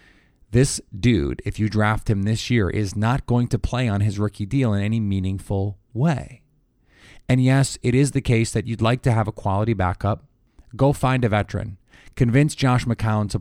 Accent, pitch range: American, 100-125 Hz